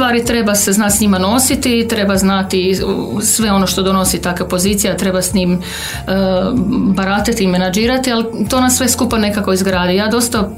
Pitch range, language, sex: 195-240 Hz, Croatian, female